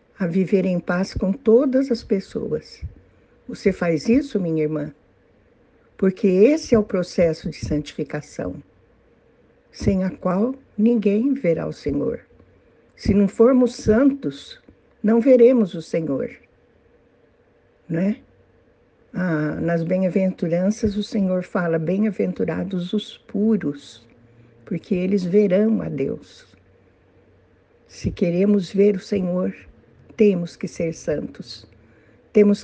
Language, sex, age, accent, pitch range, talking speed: Portuguese, female, 60-79, Brazilian, 180-220 Hz, 110 wpm